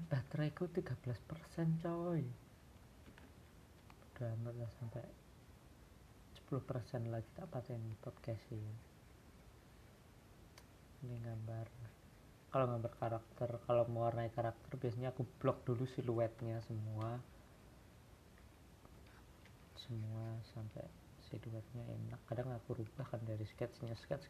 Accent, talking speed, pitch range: native, 95 wpm, 110-125 Hz